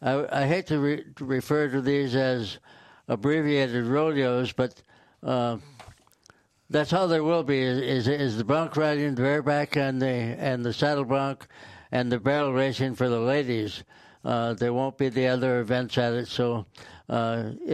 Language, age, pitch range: English, 60-79, 120-140 Hz